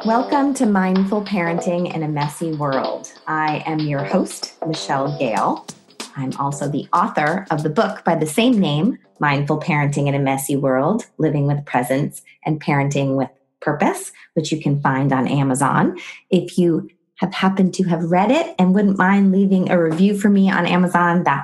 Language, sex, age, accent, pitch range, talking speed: English, female, 20-39, American, 150-195 Hz, 175 wpm